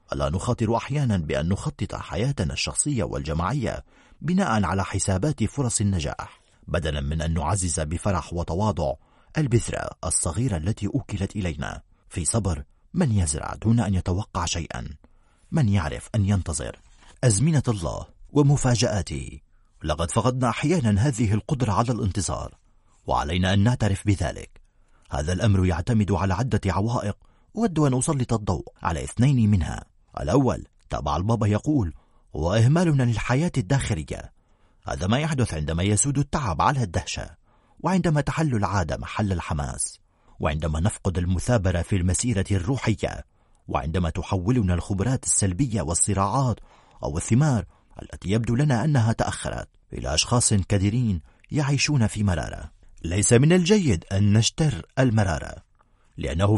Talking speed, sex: 120 wpm, male